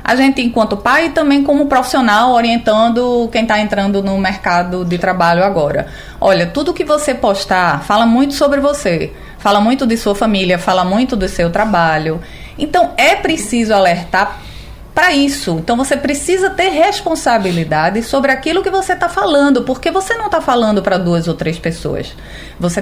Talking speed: 165 wpm